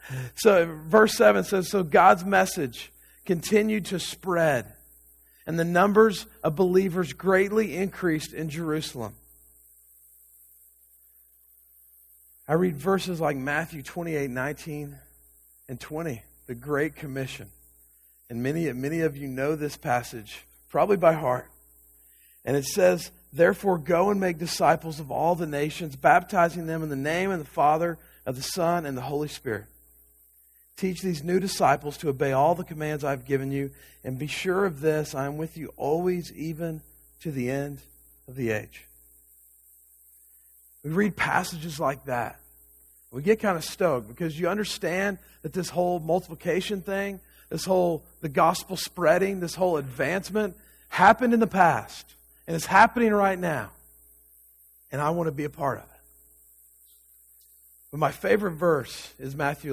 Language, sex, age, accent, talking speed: English, male, 40-59, American, 150 wpm